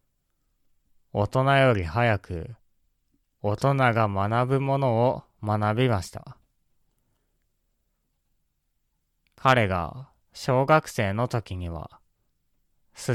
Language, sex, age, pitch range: Japanese, male, 20-39, 90-125 Hz